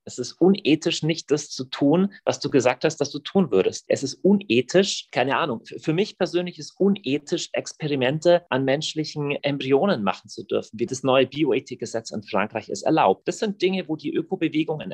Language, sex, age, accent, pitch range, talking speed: German, male, 30-49, German, 130-175 Hz, 195 wpm